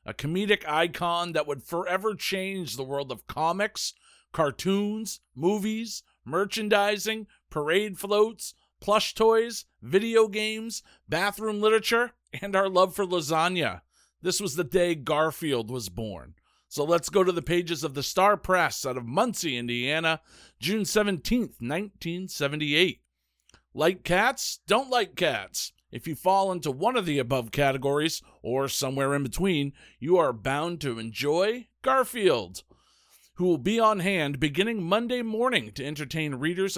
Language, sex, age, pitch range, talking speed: English, male, 50-69, 140-205 Hz, 140 wpm